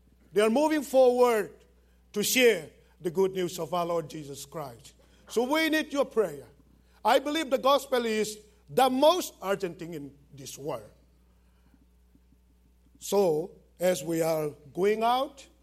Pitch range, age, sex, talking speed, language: 175-245 Hz, 50-69, male, 140 wpm, English